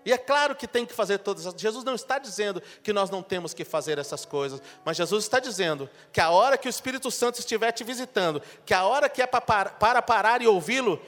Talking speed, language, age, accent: 250 wpm, Portuguese, 40-59, Brazilian